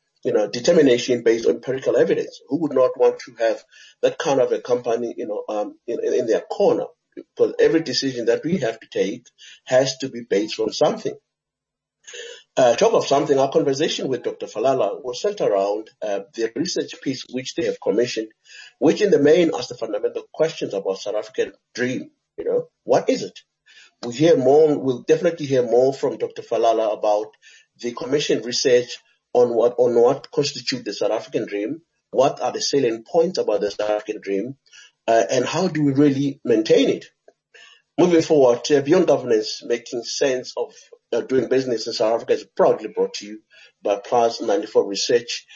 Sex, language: male, English